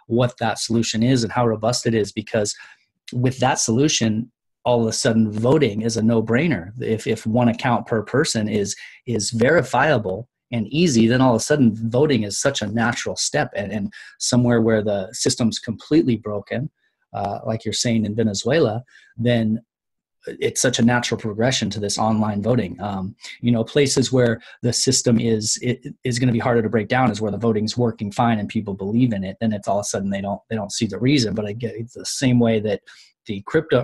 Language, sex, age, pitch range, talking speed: English, male, 30-49, 110-120 Hz, 210 wpm